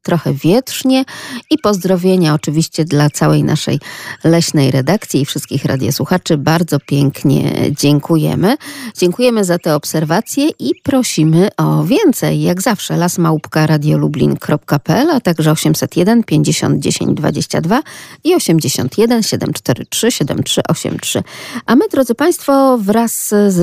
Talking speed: 115 wpm